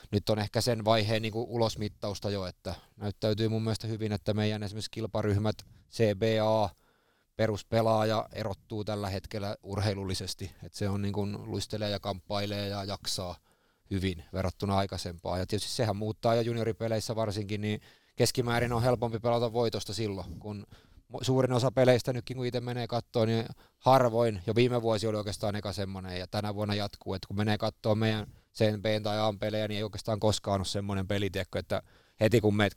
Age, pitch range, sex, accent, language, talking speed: 20-39, 100-115 Hz, male, native, Finnish, 165 wpm